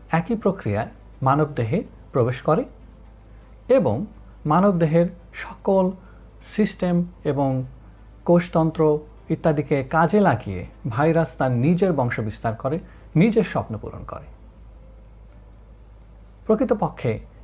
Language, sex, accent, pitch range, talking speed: Bengali, male, native, 110-165 Hz, 85 wpm